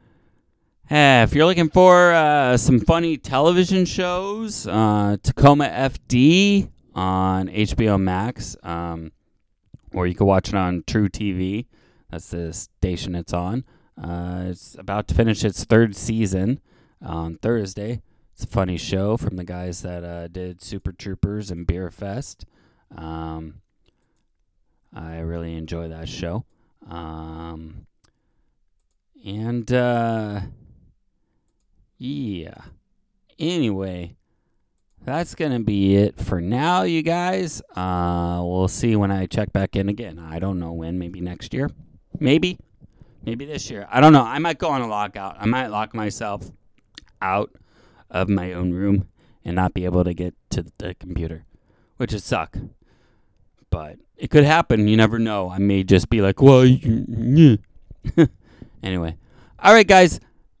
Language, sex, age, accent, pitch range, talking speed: English, male, 20-39, American, 90-125 Hz, 140 wpm